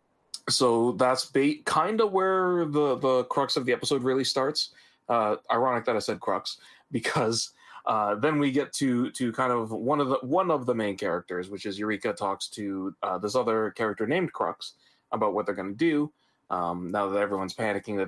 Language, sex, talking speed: English, male, 200 wpm